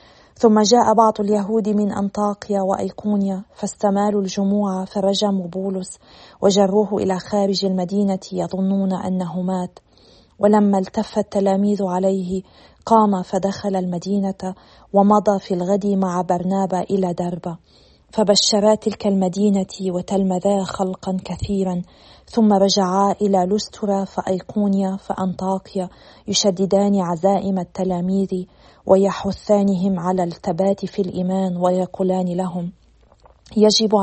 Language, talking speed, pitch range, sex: Arabic, 95 wpm, 185-200 Hz, female